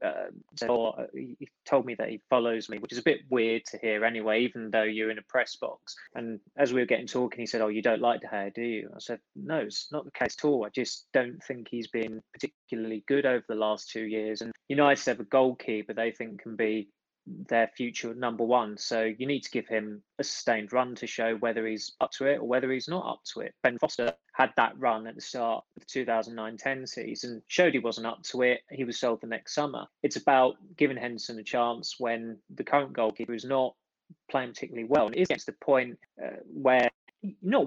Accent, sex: British, male